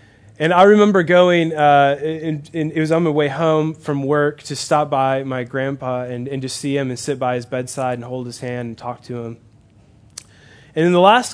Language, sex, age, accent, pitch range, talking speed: English, male, 20-39, American, 125-160 Hz, 230 wpm